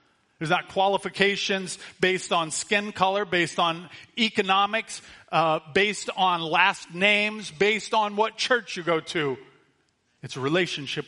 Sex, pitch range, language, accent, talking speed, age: male, 135-185 Hz, English, American, 135 wpm, 40-59